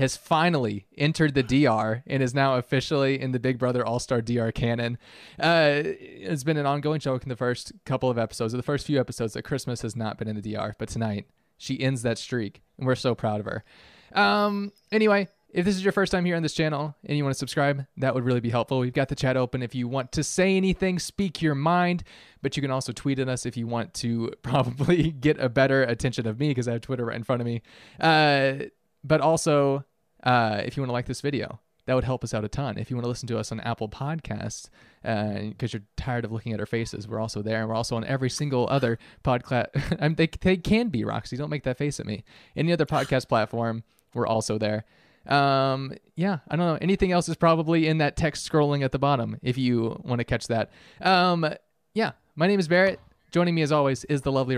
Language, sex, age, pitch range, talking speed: English, male, 20-39, 120-155 Hz, 240 wpm